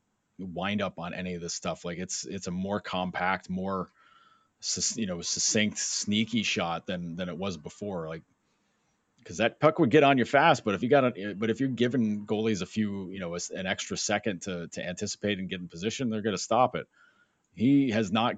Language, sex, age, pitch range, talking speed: English, male, 30-49, 90-135 Hz, 210 wpm